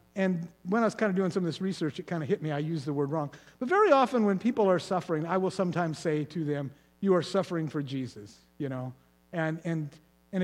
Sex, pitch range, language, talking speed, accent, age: male, 145-225 Hz, English, 255 wpm, American, 50-69